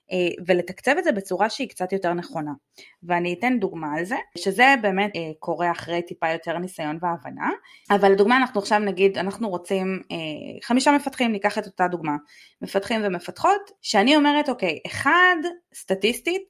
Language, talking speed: Hebrew, 150 wpm